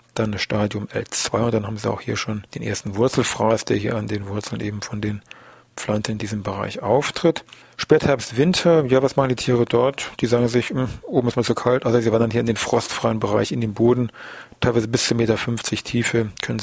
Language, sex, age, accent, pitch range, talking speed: German, male, 40-59, German, 110-130 Hz, 225 wpm